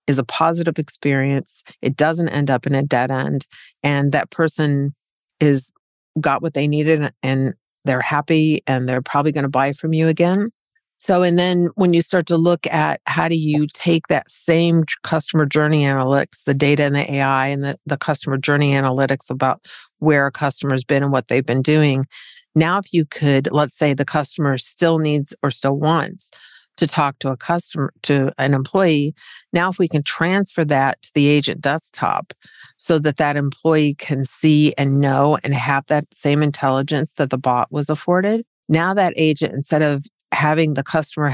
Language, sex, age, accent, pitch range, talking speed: English, female, 50-69, American, 140-160 Hz, 185 wpm